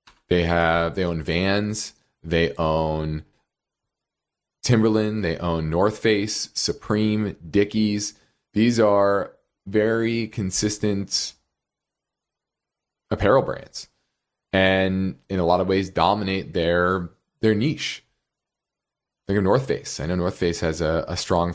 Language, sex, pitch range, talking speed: English, male, 85-105 Hz, 120 wpm